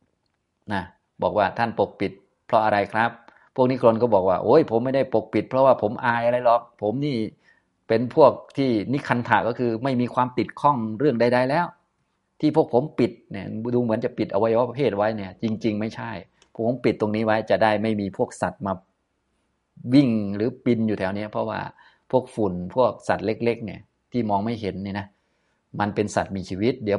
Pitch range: 95-120 Hz